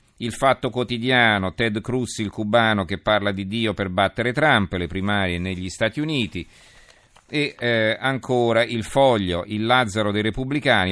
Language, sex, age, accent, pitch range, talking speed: Italian, male, 50-69, native, 90-110 Hz, 155 wpm